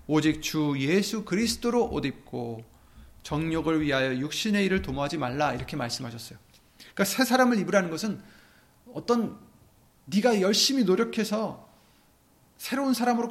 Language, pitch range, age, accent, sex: Korean, 130-205 Hz, 30-49, native, male